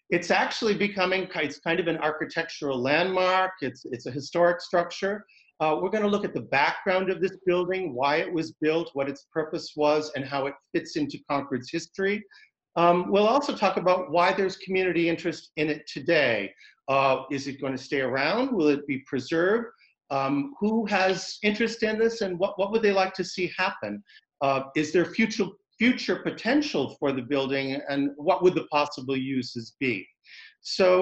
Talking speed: 180 wpm